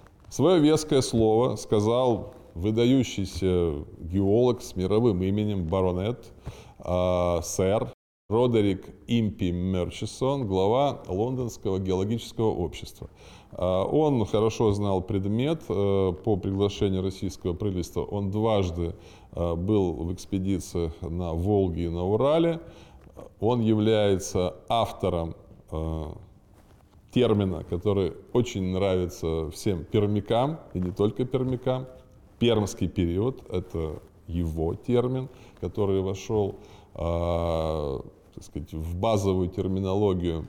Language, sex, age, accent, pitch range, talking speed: Russian, male, 20-39, native, 90-115 Hz, 100 wpm